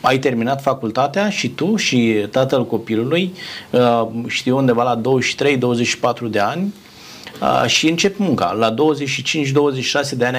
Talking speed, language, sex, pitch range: 120 wpm, Romanian, male, 115-145 Hz